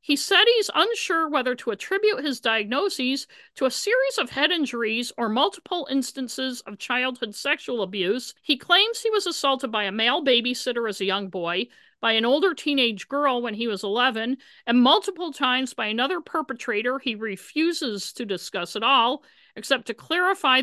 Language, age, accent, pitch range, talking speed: English, 50-69, American, 230-290 Hz, 170 wpm